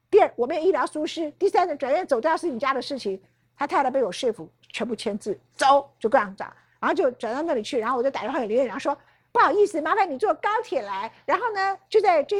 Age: 50-69